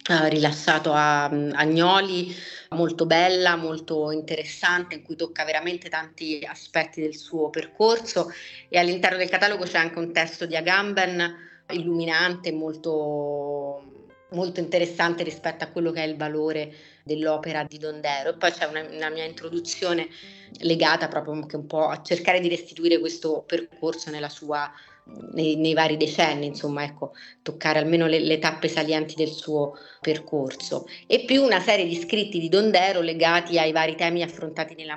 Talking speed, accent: 150 wpm, native